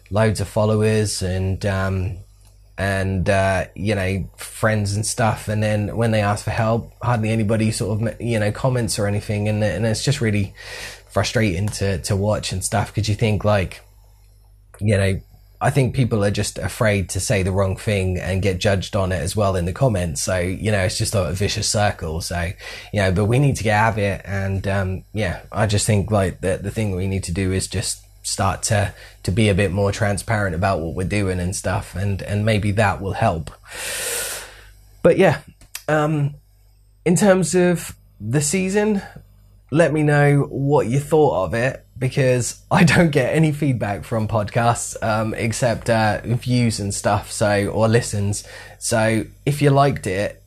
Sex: male